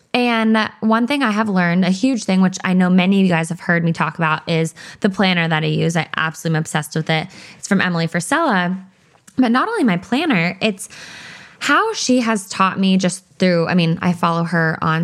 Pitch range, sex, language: 165-200 Hz, female, English